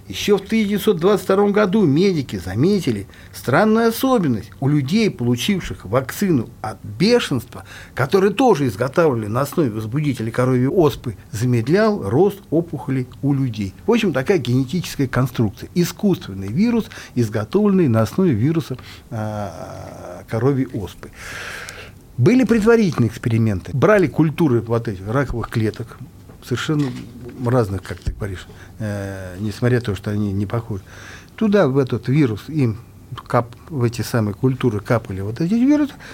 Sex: male